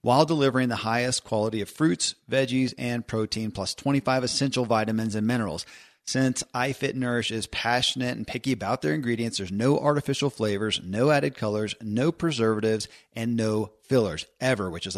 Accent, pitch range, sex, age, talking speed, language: American, 110-135 Hz, male, 40-59, 165 wpm, English